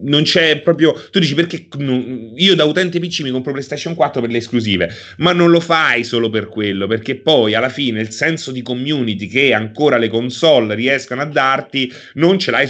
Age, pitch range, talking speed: 30-49, 115-160 Hz, 200 wpm